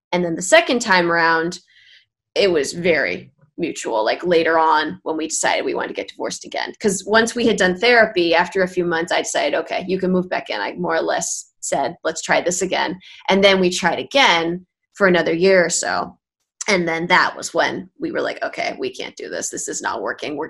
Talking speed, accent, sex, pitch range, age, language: 225 wpm, American, female, 175-225 Hz, 20-39, English